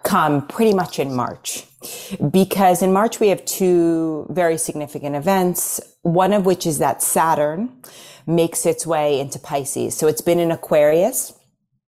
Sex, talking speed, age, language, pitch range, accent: female, 150 wpm, 30-49, English, 140-185 Hz, American